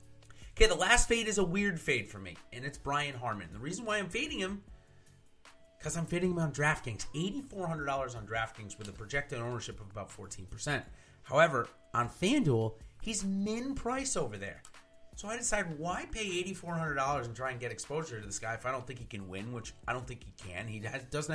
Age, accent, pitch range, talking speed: 30-49, American, 110-170 Hz, 200 wpm